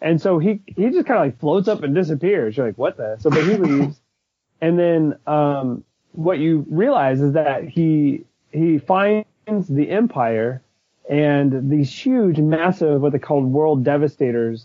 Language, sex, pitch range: English, male, 130-160 Hz